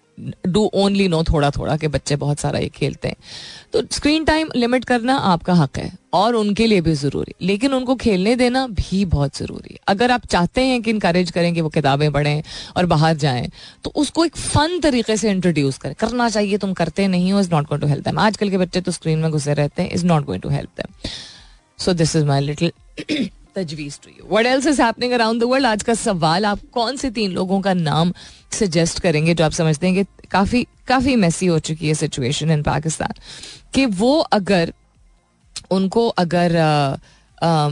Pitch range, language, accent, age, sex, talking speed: 155-220 Hz, Hindi, native, 30-49, female, 115 wpm